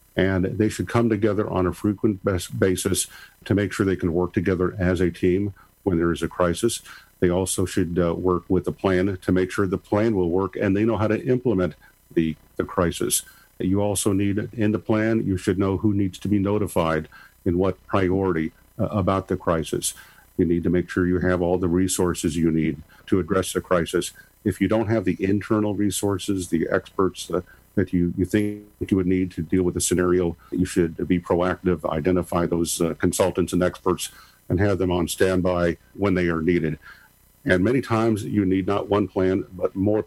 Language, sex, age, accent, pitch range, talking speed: English, male, 50-69, American, 90-100 Hz, 205 wpm